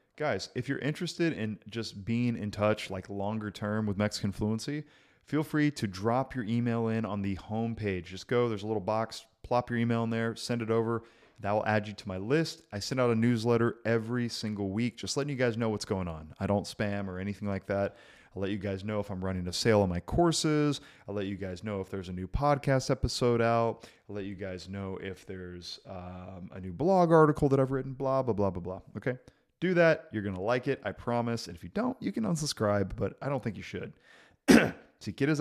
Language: English